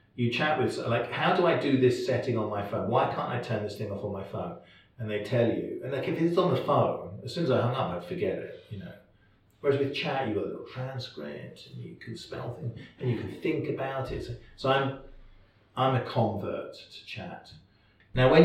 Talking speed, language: 240 wpm, English